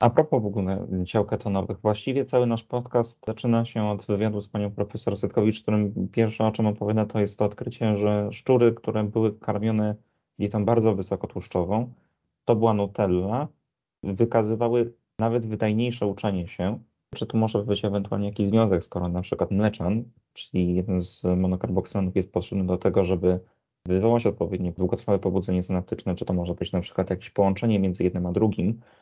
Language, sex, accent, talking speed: Polish, male, native, 165 wpm